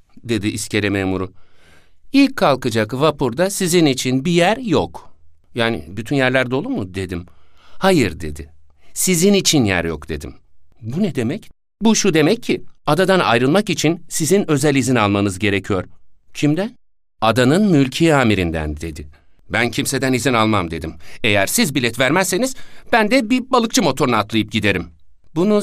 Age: 60-79